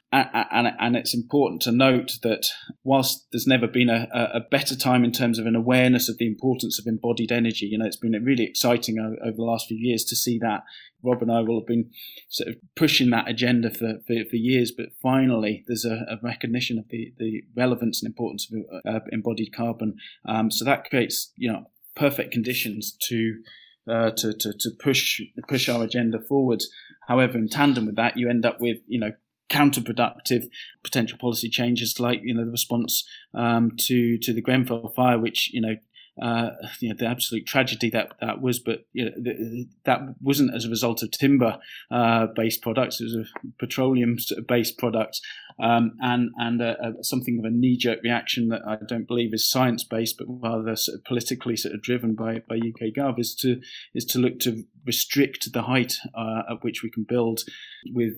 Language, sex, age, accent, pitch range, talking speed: English, male, 20-39, British, 115-125 Hz, 195 wpm